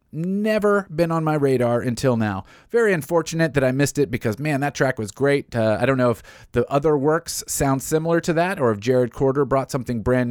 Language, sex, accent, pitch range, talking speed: English, male, American, 105-145 Hz, 220 wpm